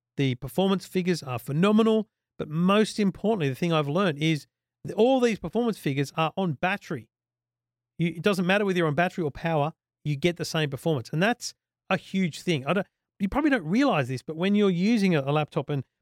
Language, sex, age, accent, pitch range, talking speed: English, male, 40-59, Australian, 140-180 Hz, 210 wpm